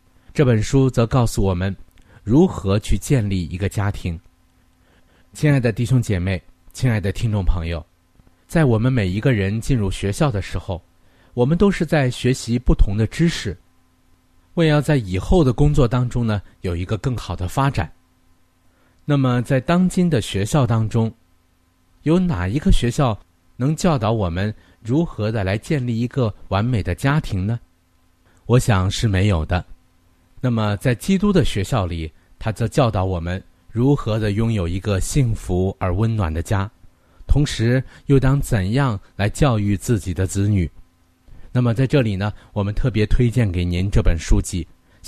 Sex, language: male, Chinese